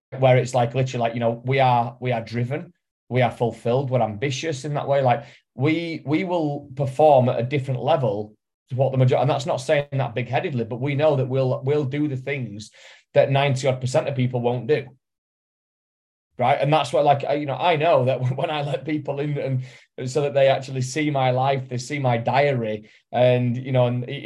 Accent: British